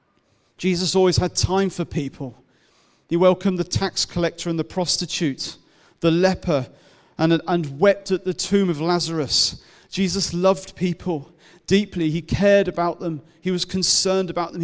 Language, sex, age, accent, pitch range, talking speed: English, male, 40-59, British, 150-185 Hz, 150 wpm